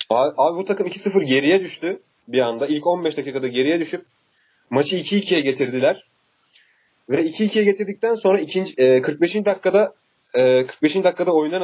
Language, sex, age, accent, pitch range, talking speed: Turkish, male, 30-49, native, 155-195 Hz, 150 wpm